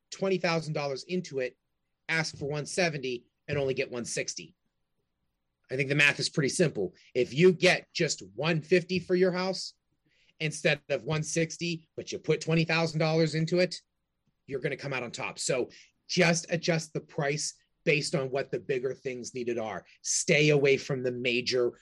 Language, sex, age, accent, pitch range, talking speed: English, male, 30-49, American, 130-165 Hz, 160 wpm